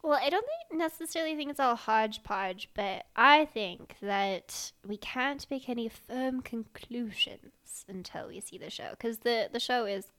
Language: English